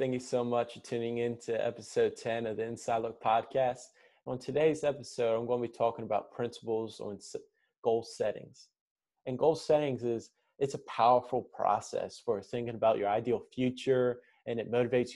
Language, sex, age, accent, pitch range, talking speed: English, male, 20-39, American, 115-135 Hz, 180 wpm